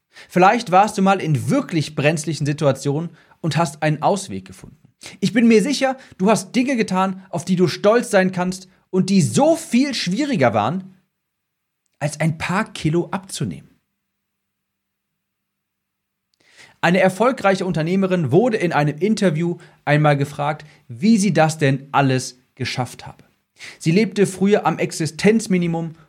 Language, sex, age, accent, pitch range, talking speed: German, male, 40-59, German, 155-210 Hz, 135 wpm